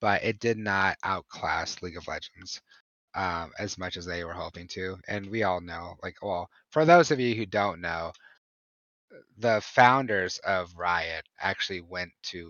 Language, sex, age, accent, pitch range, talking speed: English, male, 30-49, American, 85-100 Hz, 175 wpm